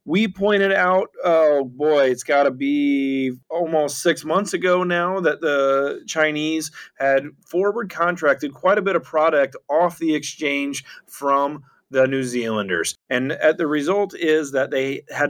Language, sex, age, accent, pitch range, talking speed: English, male, 30-49, American, 130-160 Hz, 155 wpm